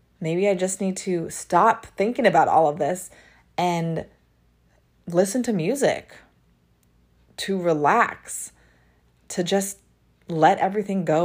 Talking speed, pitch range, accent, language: 115 wpm, 155-210 Hz, American, English